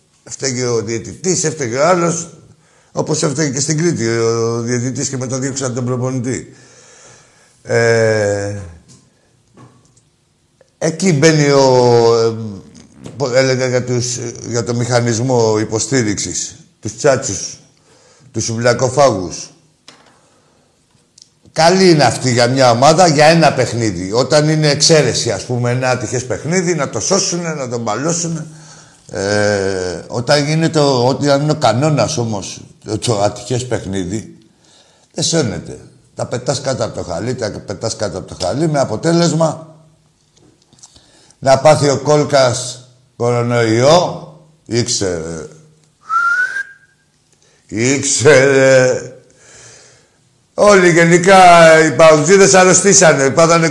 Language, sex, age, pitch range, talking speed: Greek, male, 60-79, 120-160 Hz, 105 wpm